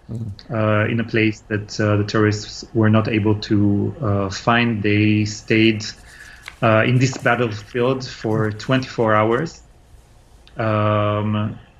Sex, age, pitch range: male, 30-49, 105-115 Hz